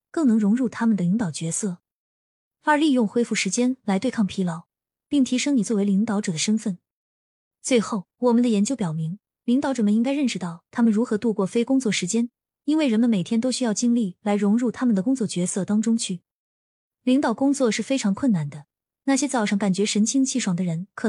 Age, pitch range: 20-39, 190-245 Hz